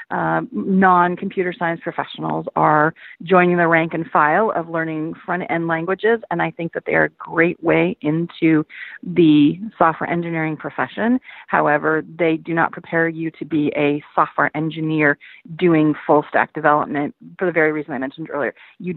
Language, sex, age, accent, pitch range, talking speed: English, female, 30-49, American, 150-180 Hz, 160 wpm